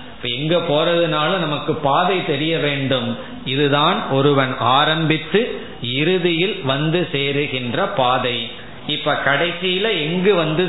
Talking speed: 85 wpm